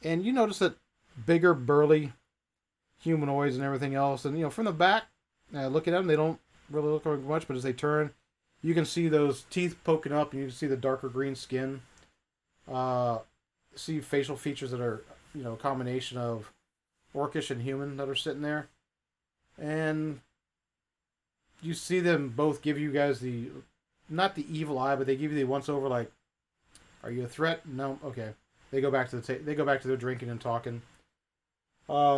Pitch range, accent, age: 125-150 Hz, American, 40-59